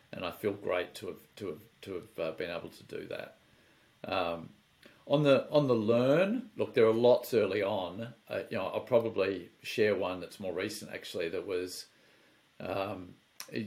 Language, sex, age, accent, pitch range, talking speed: English, male, 50-69, Australian, 95-115 Hz, 185 wpm